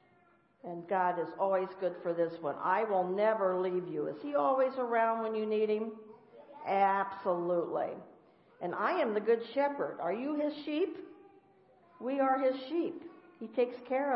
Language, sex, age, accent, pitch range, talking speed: English, female, 50-69, American, 190-255 Hz, 165 wpm